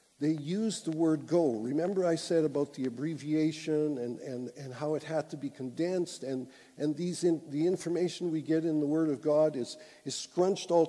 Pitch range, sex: 145-175 Hz, male